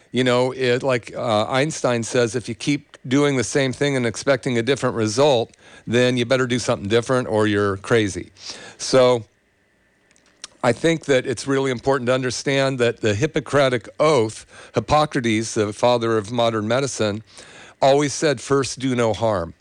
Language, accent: English, American